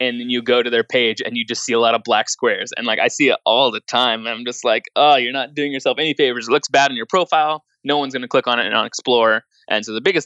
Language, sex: English, male